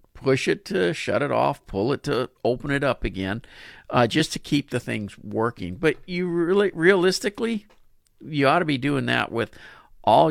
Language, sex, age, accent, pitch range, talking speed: English, male, 50-69, American, 105-140 Hz, 185 wpm